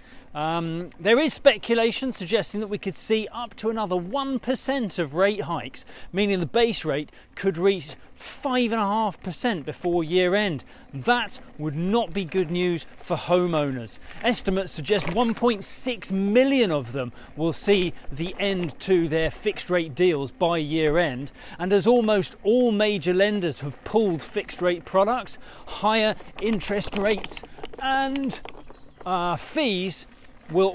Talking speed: 130 wpm